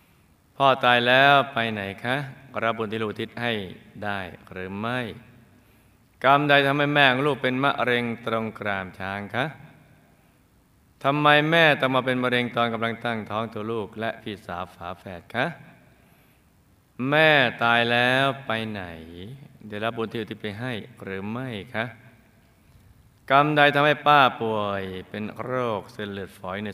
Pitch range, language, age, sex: 105-130 Hz, Thai, 20-39, male